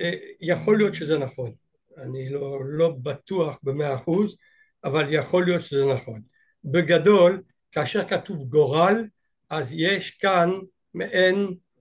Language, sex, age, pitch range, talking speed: Hebrew, male, 60-79, 155-210 Hz, 115 wpm